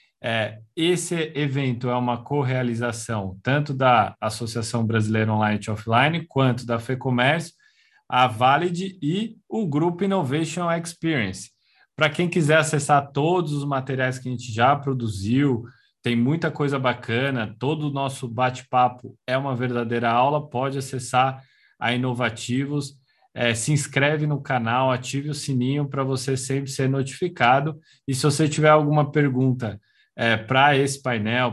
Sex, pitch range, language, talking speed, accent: male, 125-155 Hz, Portuguese, 140 wpm, Brazilian